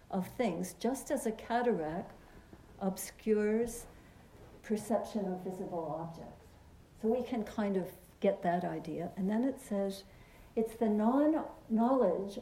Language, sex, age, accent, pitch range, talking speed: English, female, 60-79, American, 195-245 Hz, 125 wpm